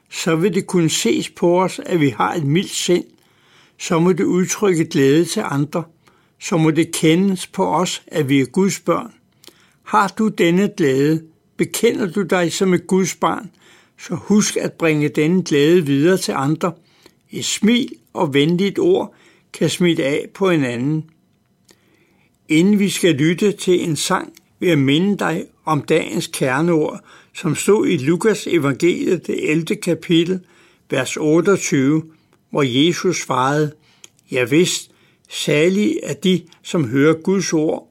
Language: Danish